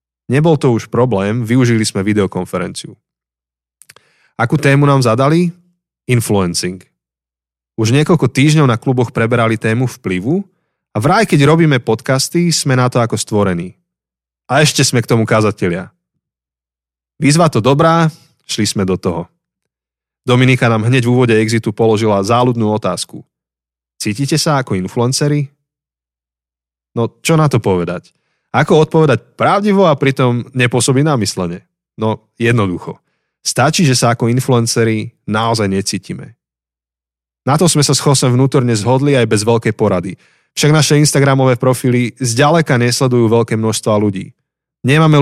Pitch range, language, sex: 105-145 Hz, Slovak, male